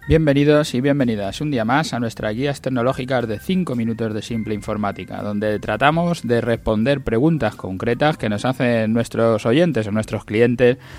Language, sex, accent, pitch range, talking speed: Spanish, male, Spanish, 110-140 Hz, 165 wpm